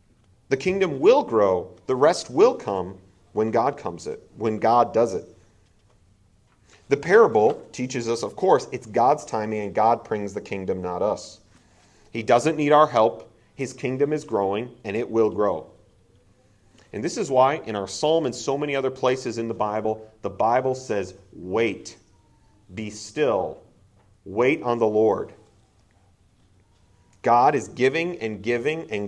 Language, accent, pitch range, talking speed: English, American, 100-135 Hz, 155 wpm